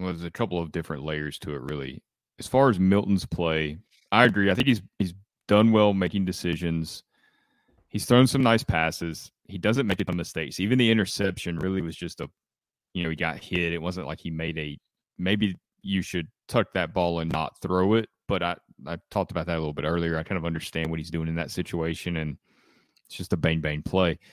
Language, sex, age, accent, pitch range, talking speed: English, male, 30-49, American, 80-105 Hz, 225 wpm